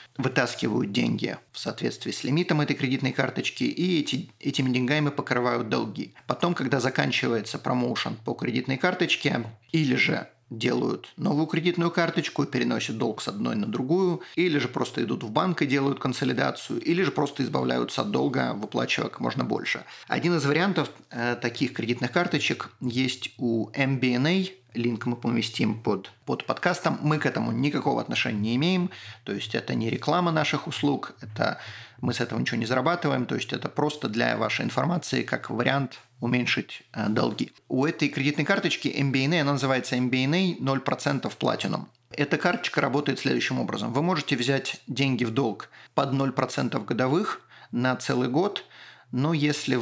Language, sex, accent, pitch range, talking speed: Russian, male, native, 125-155 Hz, 155 wpm